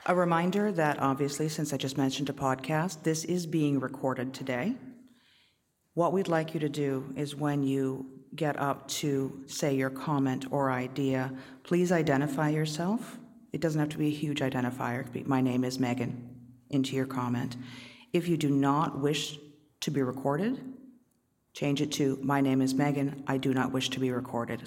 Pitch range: 135-170 Hz